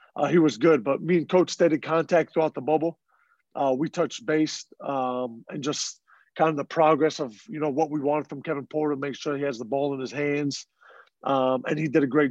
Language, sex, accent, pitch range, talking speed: English, male, American, 135-155 Hz, 240 wpm